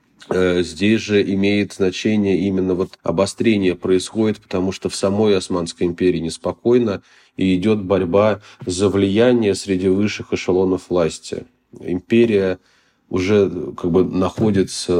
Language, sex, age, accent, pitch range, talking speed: Russian, male, 20-39, native, 90-105 Hz, 115 wpm